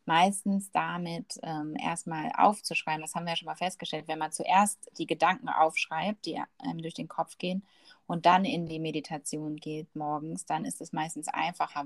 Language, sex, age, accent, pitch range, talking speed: German, female, 30-49, German, 160-195 Hz, 180 wpm